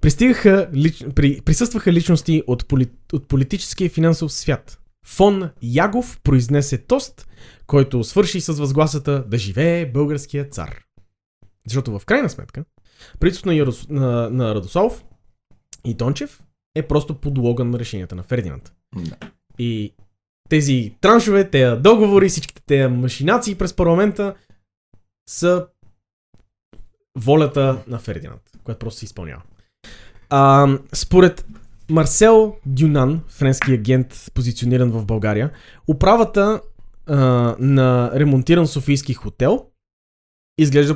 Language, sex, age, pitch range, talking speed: Bulgarian, male, 20-39, 115-160 Hz, 105 wpm